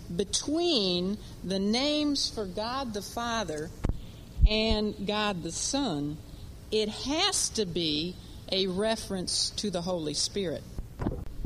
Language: English